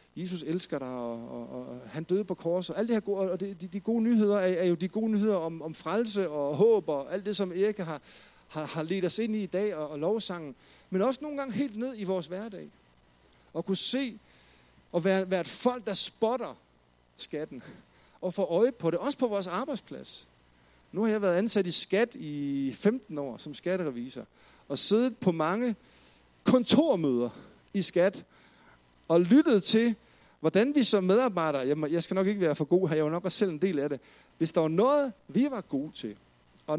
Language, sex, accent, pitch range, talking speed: Danish, male, native, 135-205 Hz, 210 wpm